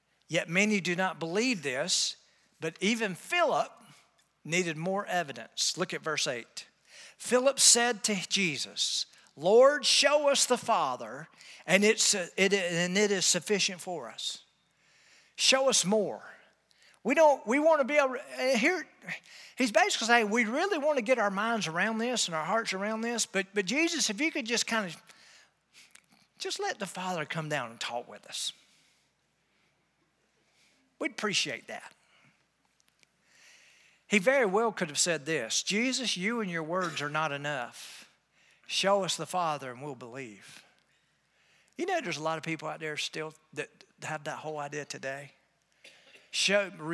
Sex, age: male, 50-69